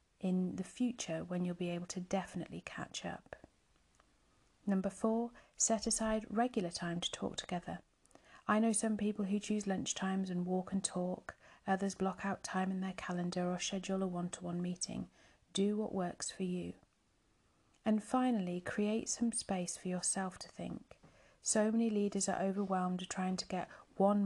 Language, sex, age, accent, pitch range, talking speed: English, female, 40-59, British, 180-205 Hz, 170 wpm